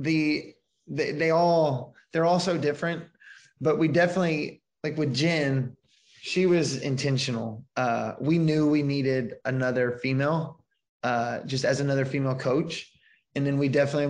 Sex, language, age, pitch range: male, English, 20-39, 125-145 Hz